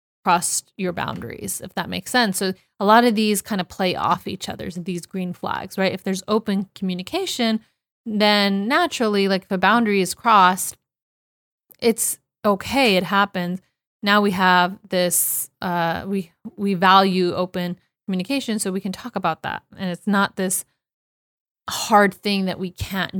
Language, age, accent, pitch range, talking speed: English, 30-49, American, 185-220 Hz, 165 wpm